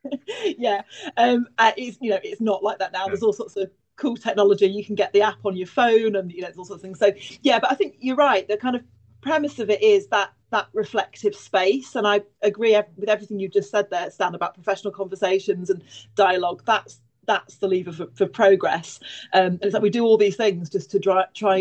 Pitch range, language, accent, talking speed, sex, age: 190-225 Hz, English, British, 230 wpm, female, 30-49